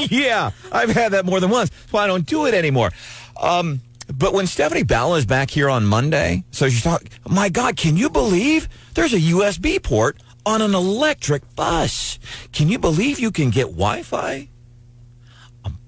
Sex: male